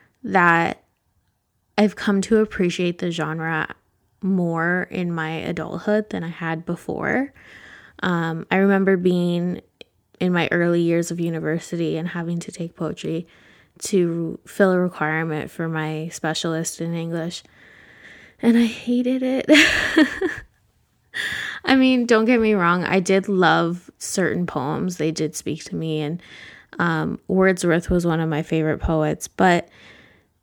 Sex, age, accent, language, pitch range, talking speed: female, 10-29, American, English, 160-195 Hz, 135 wpm